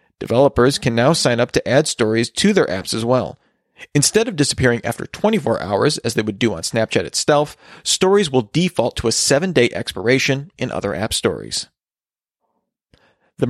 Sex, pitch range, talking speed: male, 120-160 Hz, 170 wpm